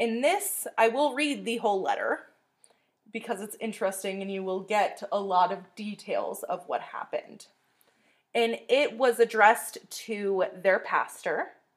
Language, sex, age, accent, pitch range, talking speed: English, female, 20-39, American, 195-255 Hz, 150 wpm